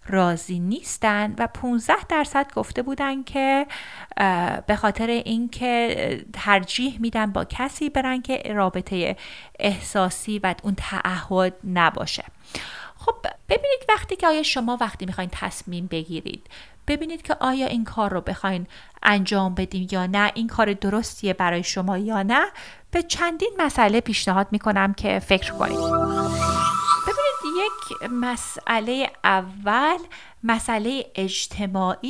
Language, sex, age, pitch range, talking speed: Persian, female, 30-49, 185-250 Hz, 120 wpm